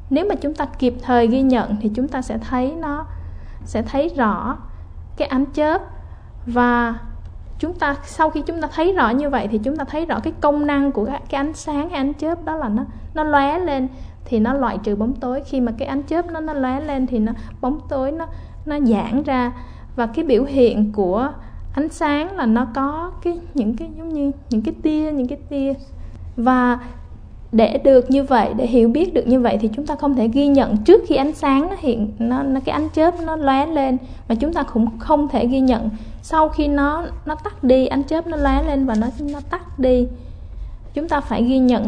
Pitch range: 235-295 Hz